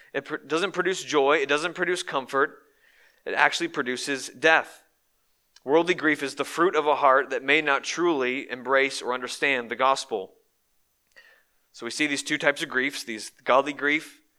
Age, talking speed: 30-49, 165 wpm